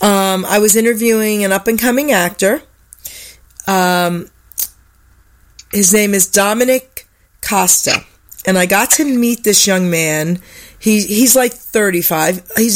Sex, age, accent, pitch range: female, 40-59, American, 170-210 Hz